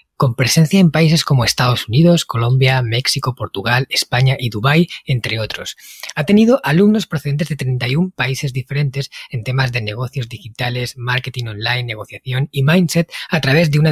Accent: Spanish